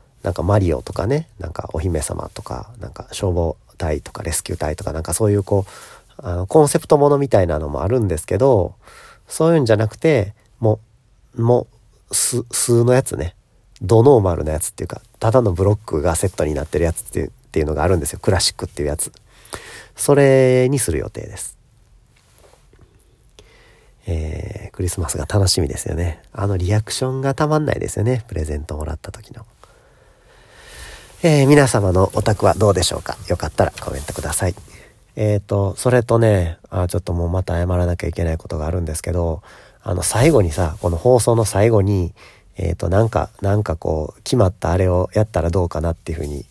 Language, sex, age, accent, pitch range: Japanese, male, 40-59, native, 85-110 Hz